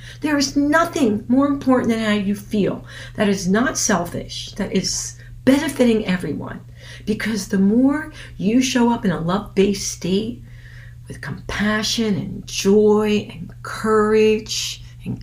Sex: female